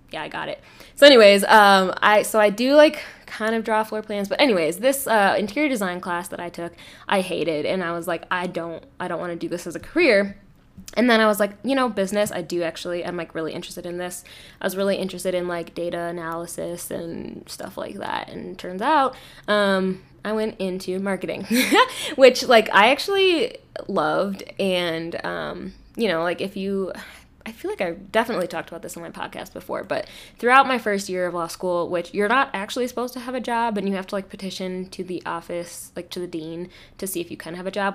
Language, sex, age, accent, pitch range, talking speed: English, female, 10-29, American, 175-220 Hz, 230 wpm